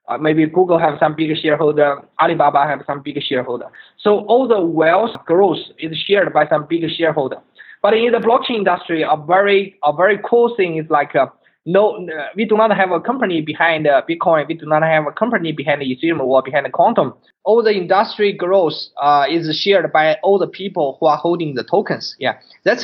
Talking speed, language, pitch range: 200 wpm, English, 155-190 Hz